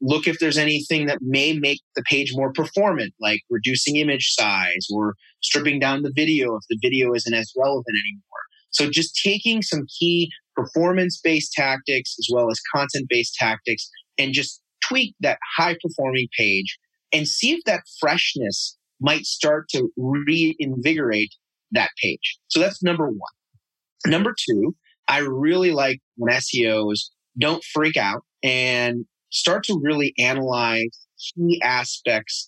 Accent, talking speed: American, 140 wpm